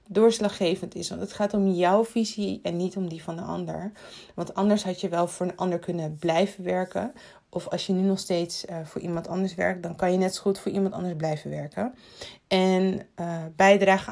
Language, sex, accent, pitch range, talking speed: Dutch, female, Dutch, 180-225 Hz, 215 wpm